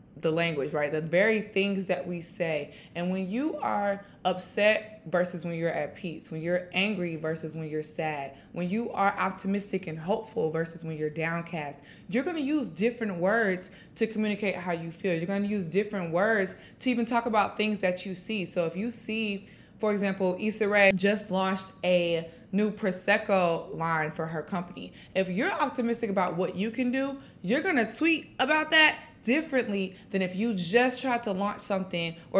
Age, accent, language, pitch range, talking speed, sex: 20-39, American, English, 175-215 Hz, 190 wpm, female